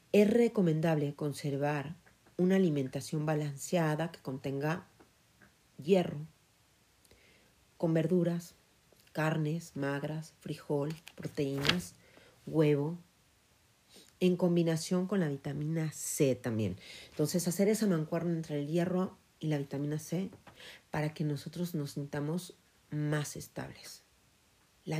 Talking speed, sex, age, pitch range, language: 100 wpm, female, 40-59, 140-175 Hz, Spanish